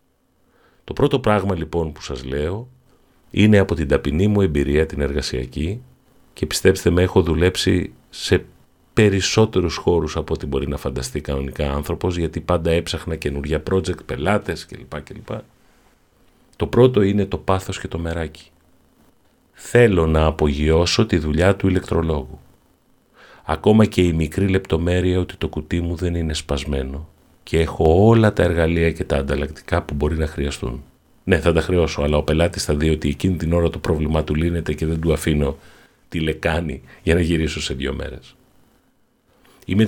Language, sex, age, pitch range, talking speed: Greek, male, 40-59, 75-95 Hz, 160 wpm